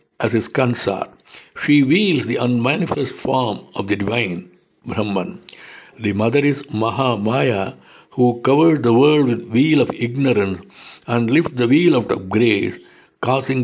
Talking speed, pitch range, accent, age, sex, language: 135 wpm, 110-140 Hz, Indian, 60-79, male, English